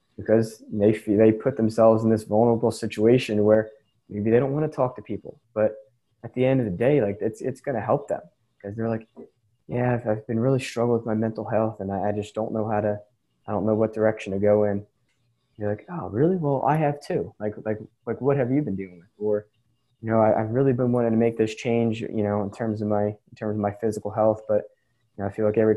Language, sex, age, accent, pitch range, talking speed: English, male, 20-39, American, 105-120 Hz, 250 wpm